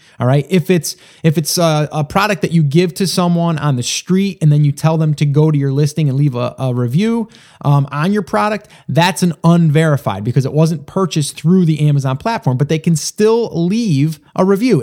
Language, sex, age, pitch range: English, male, 30-49, 145-185 Hz